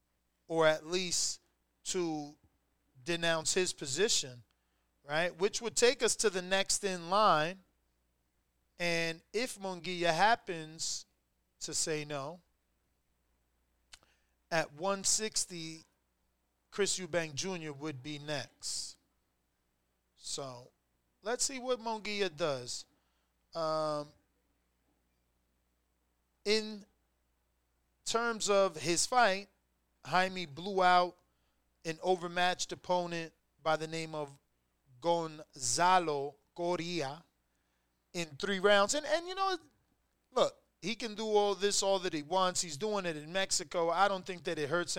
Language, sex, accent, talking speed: English, male, American, 110 wpm